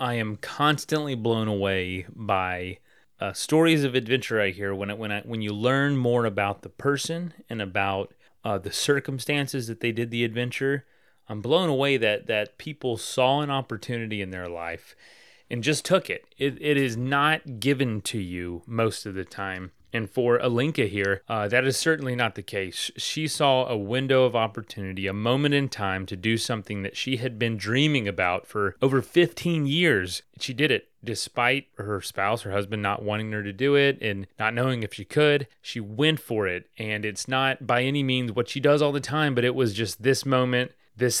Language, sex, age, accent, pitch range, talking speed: English, male, 30-49, American, 105-140 Hz, 200 wpm